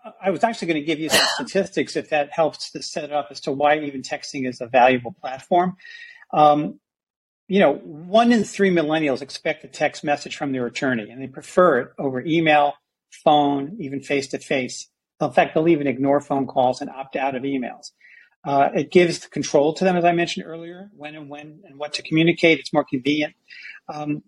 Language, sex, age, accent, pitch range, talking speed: English, male, 40-59, American, 145-180 Hz, 205 wpm